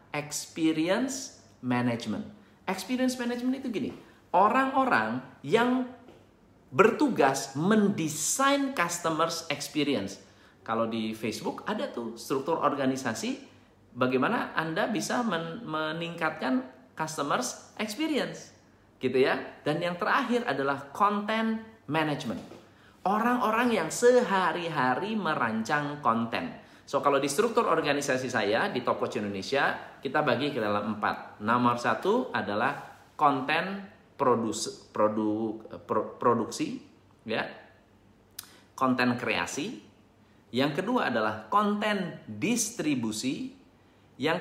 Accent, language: native, Indonesian